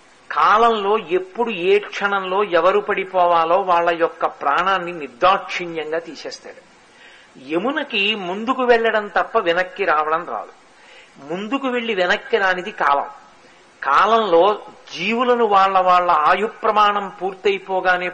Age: 50-69